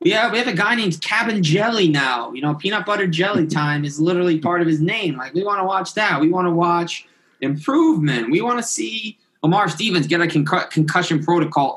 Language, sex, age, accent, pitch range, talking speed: English, male, 20-39, American, 125-160 Hz, 220 wpm